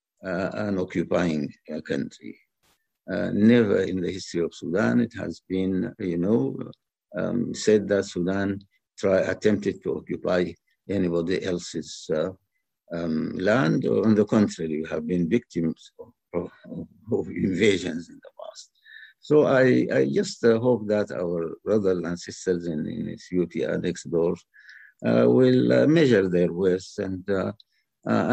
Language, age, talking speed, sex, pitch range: English, 60-79, 150 wpm, male, 90-110 Hz